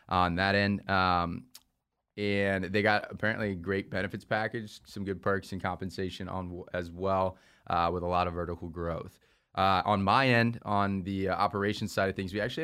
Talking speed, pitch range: 180 wpm, 90-100 Hz